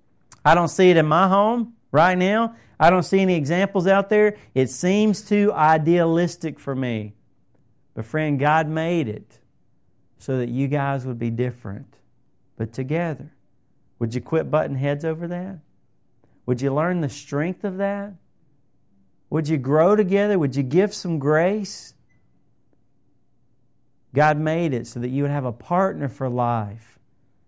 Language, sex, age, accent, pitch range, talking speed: English, male, 40-59, American, 135-180 Hz, 155 wpm